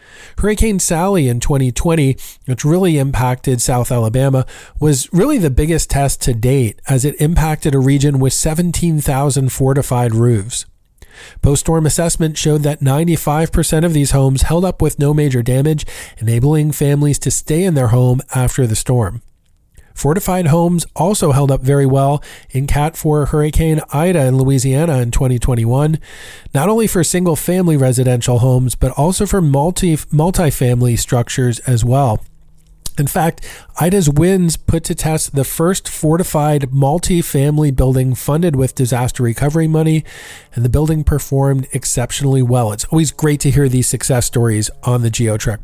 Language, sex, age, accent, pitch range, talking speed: English, male, 40-59, American, 125-160 Hz, 150 wpm